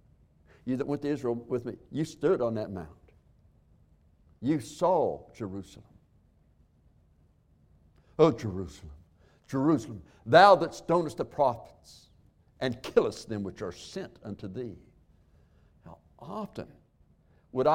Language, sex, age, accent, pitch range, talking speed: English, male, 60-79, American, 75-100 Hz, 115 wpm